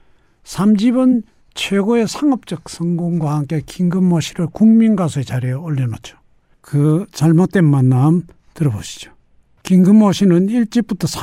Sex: male